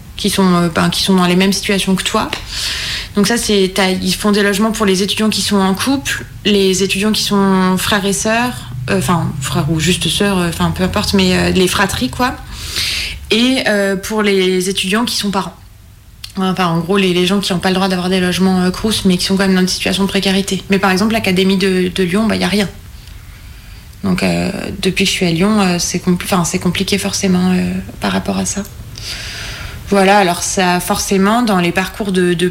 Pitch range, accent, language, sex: 175-205 Hz, French, French, female